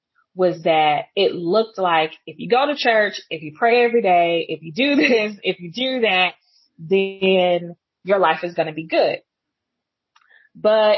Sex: female